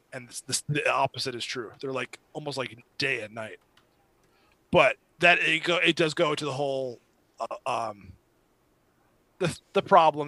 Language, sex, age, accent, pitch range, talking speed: English, male, 20-39, American, 130-160 Hz, 150 wpm